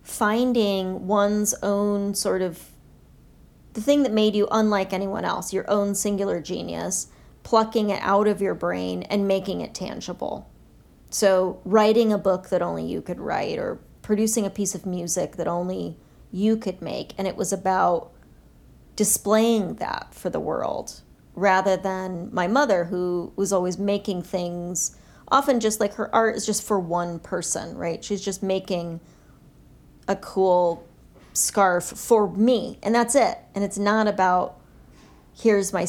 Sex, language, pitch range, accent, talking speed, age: female, English, 180-215 Hz, American, 155 wpm, 30-49